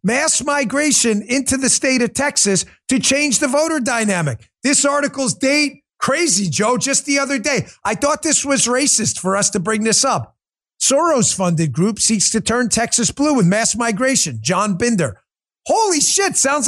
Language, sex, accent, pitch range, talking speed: English, male, American, 220-290 Hz, 170 wpm